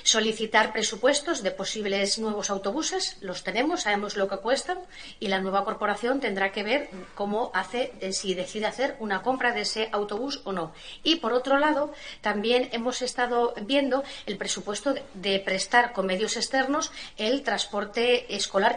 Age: 30-49